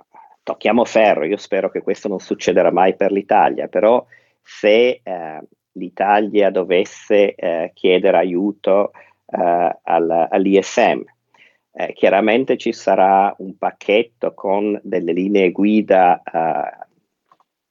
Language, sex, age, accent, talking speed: Italian, male, 50-69, native, 105 wpm